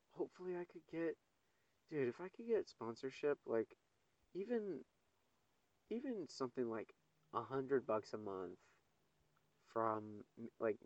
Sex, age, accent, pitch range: male, 30-49, American, 105-145 Hz